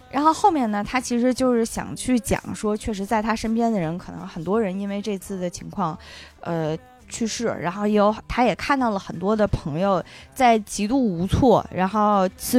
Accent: native